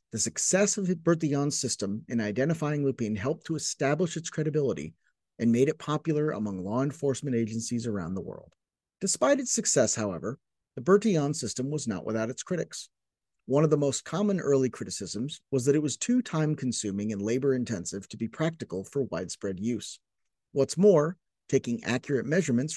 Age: 50-69